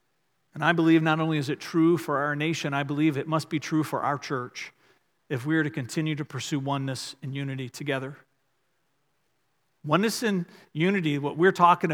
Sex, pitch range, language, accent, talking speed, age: male, 150-200 Hz, English, American, 185 wpm, 40-59